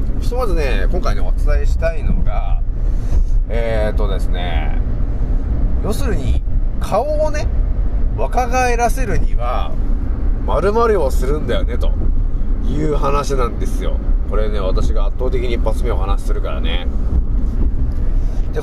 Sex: male